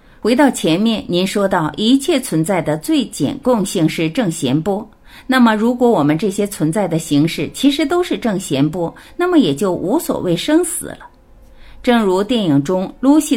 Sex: female